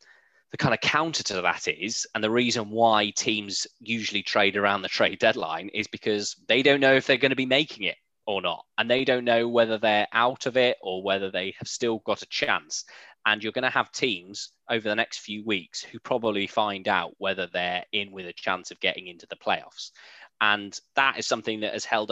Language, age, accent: English, 20-39, British